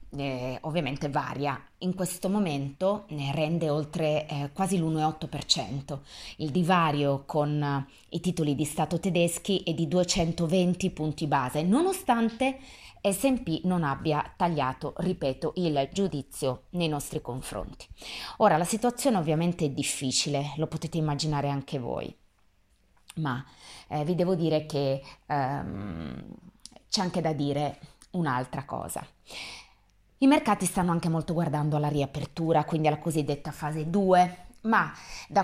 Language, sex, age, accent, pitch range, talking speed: Italian, female, 20-39, native, 145-185 Hz, 130 wpm